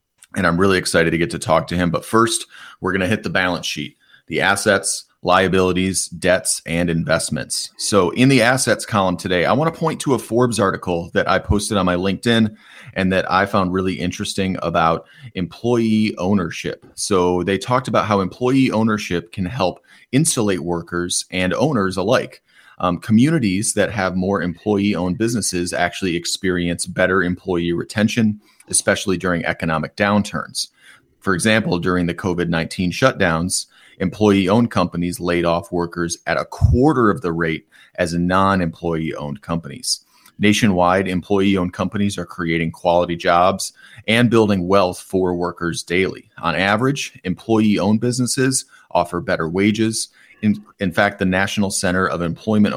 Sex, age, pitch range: male, 30-49, 85-105 Hz